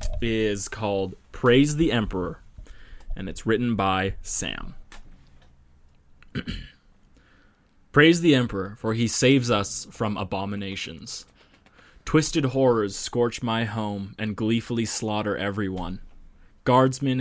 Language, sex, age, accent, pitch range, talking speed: English, male, 20-39, American, 95-115 Hz, 100 wpm